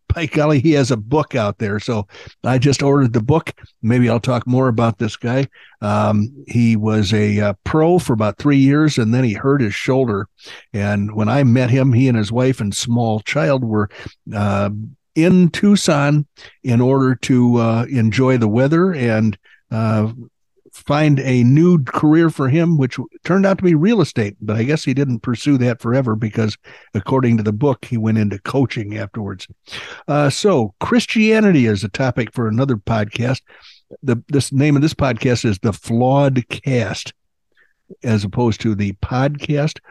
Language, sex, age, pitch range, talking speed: English, male, 60-79, 110-145 Hz, 175 wpm